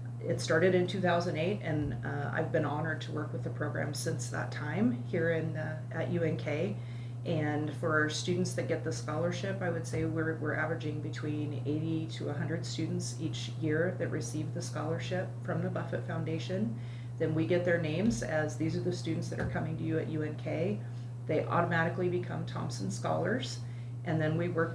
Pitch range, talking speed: 120-155 Hz, 185 wpm